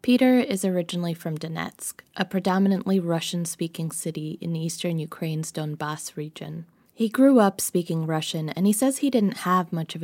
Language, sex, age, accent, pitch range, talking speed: English, female, 20-39, American, 165-200 Hz, 160 wpm